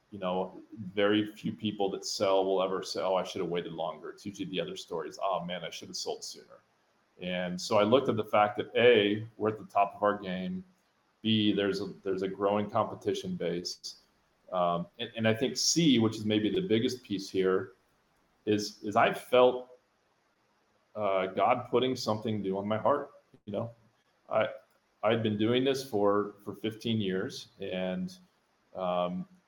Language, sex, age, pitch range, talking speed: English, male, 30-49, 95-110 Hz, 185 wpm